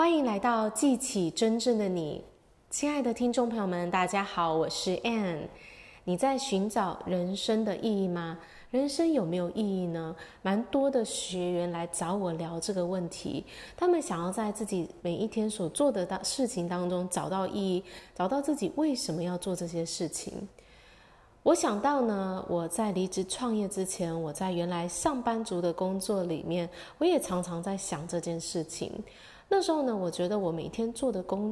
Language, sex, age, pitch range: Chinese, female, 20-39, 175-230 Hz